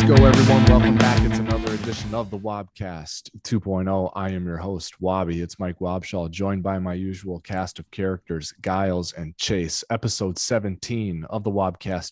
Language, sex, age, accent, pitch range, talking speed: English, male, 30-49, American, 90-110 Hz, 170 wpm